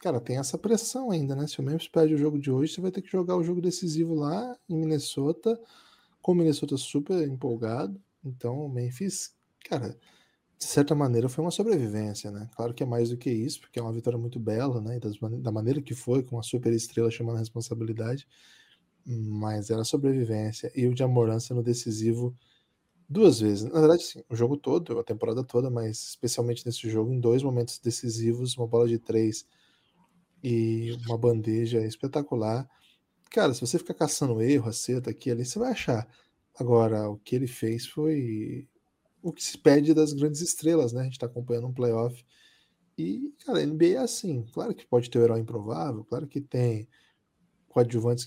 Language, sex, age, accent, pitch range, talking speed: Portuguese, male, 10-29, Brazilian, 115-150 Hz, 185 wpm